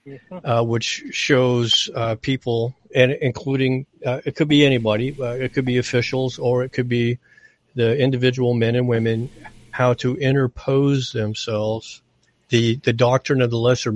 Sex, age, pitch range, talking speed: male, 50-69, 115-135 Hz, 155 wpm